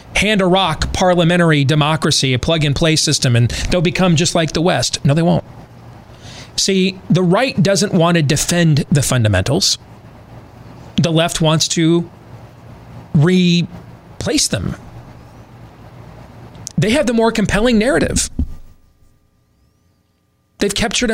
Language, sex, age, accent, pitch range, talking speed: English, male, 40-59, American, 120-175 Hz, 115 wpm